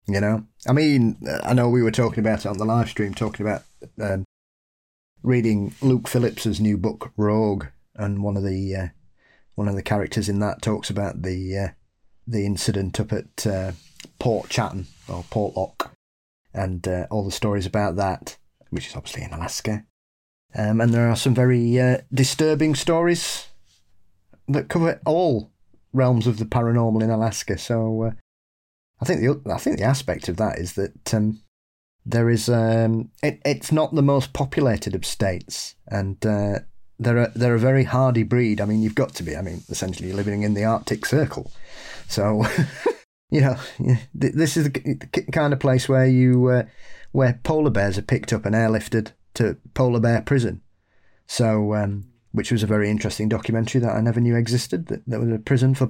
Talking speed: 185 wpm